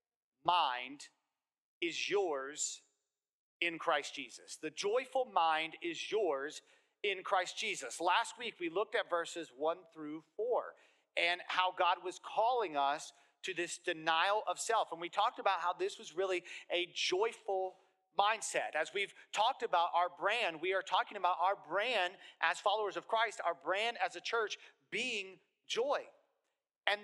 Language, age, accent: English, 40-59, American